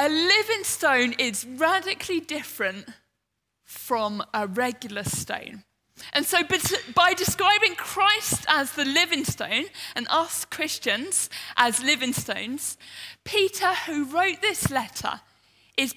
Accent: British